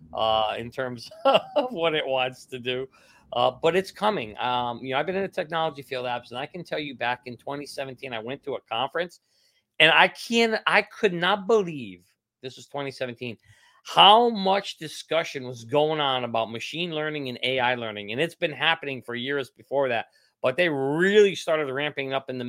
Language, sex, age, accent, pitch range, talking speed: English, male, 40-59, American, 130-190 Hz, 195 wpm